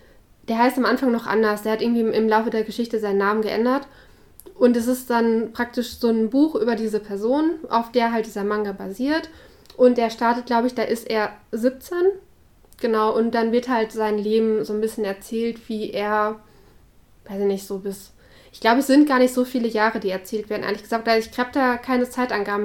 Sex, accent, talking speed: female, German, 210 wpm